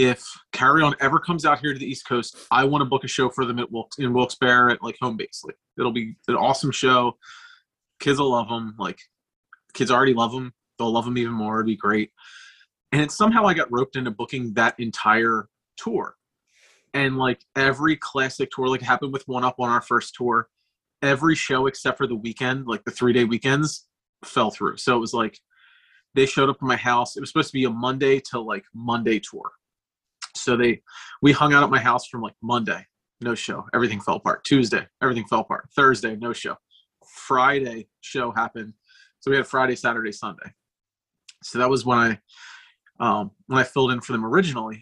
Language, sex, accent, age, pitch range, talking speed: English, male, American, 30-49, 115-135 Hz, 205 wpm